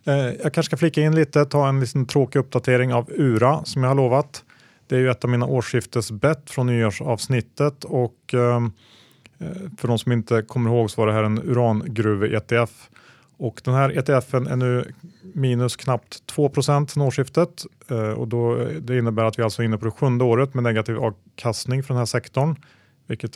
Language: Swedish